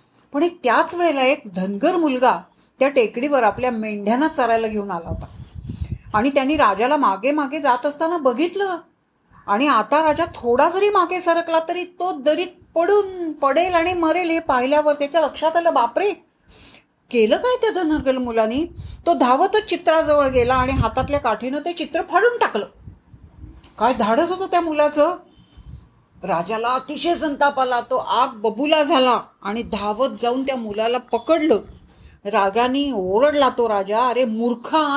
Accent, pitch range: native, 220-325 Hz